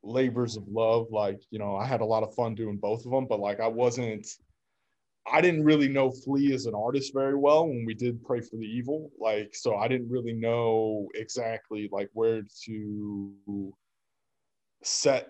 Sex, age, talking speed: male, 20-39, 190 wpm